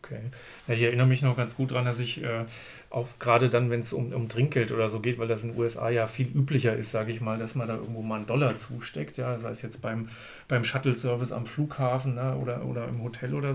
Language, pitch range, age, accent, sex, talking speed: German, 115-130 Hz, 40-59, German, male, 255 wpm